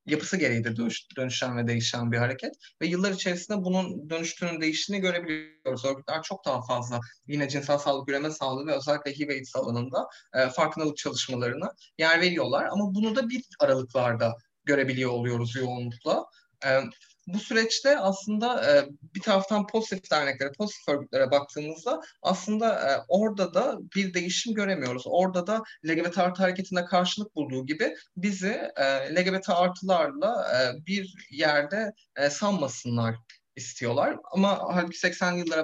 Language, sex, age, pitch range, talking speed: Turkish, male, 30-49, 135-195 Hz, 130 wpm